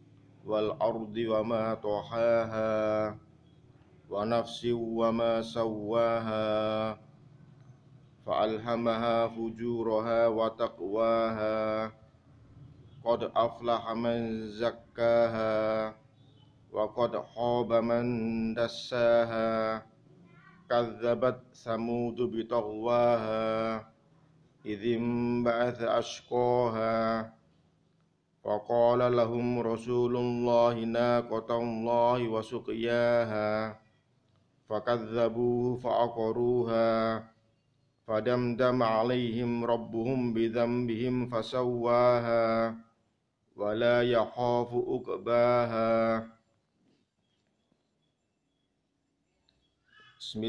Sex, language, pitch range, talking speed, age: male, Indonesian, 110-120 Hz, 40 wpm, 50-69